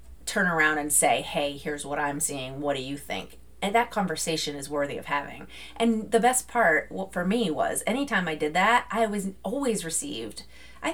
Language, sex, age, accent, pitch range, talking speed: English, female, 30-49, American, 150-185 Hz, 195 wpm